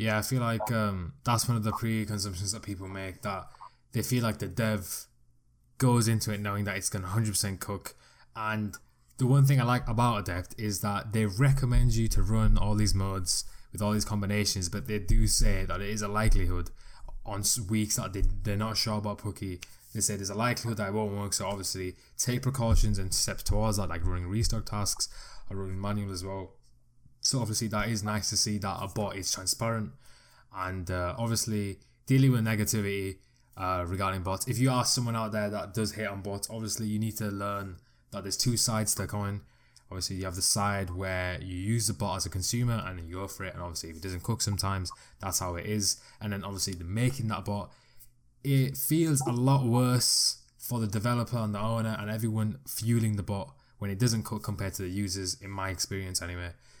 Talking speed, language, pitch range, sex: 210 wpm, English, 95-115 Hz, male